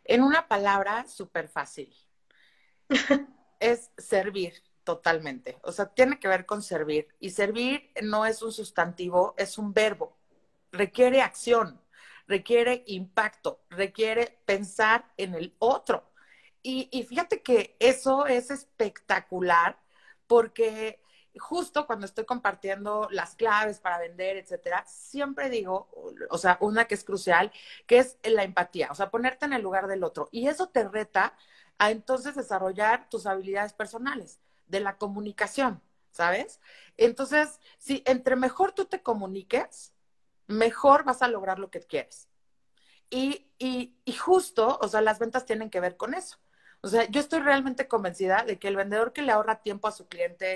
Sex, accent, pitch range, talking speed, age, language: female, Mexican, 195-255 Hz, 155 wpm, 40-59, Spanish